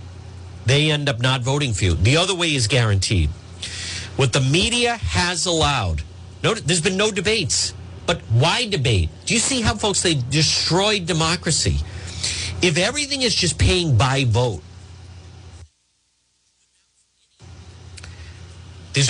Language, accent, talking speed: English, American, 125 wpm